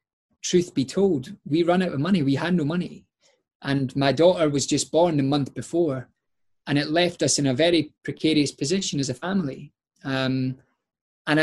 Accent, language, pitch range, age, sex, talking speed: British, English, 140-170 Hz, 20-39, male, 185 wpm